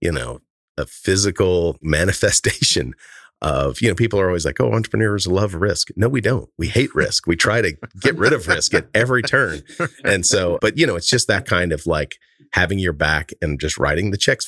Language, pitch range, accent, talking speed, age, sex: English, 80-110 Hz, American, 210 wpm, 40-59, male